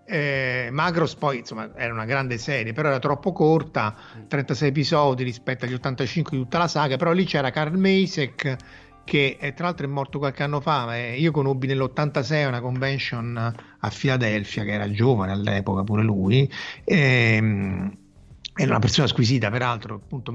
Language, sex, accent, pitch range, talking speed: Italian, male, native, 125-155 Hz, 170 wpm